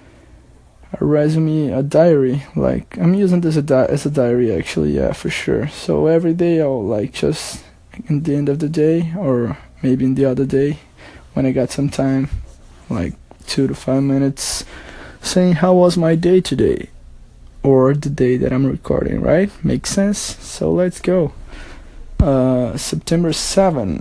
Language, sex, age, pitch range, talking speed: English, male, 20-39, 125-155 Hz, 160 wpm